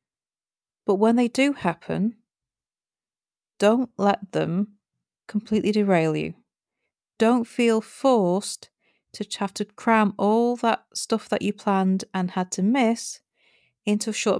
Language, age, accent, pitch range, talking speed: English, 40-59, British, 185-220 Hz, 130 wpm